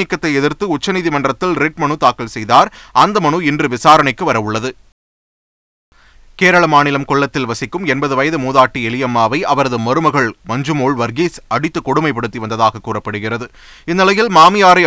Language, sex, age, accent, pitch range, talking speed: Tamil, male, 30-49, native, 125-165 Hz, 115 wpm